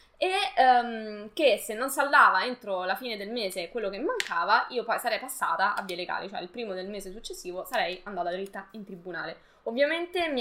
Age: 20-39